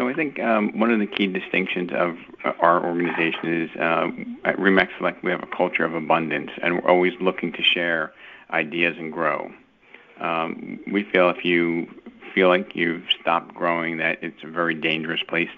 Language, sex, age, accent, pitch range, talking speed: English, male, 50-69, American, 85-90 Hz, 185 wpm